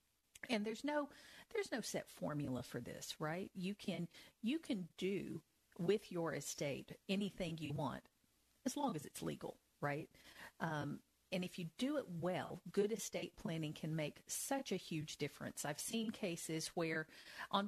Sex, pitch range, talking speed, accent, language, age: female, 160-200 Hz, 165 wpm, American, English, 50-69